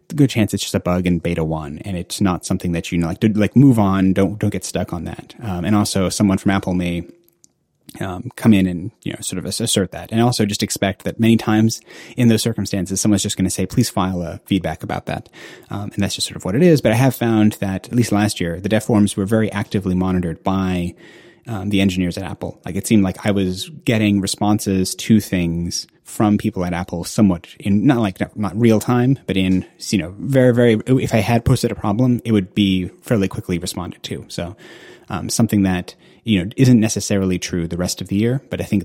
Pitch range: 90-110 Hz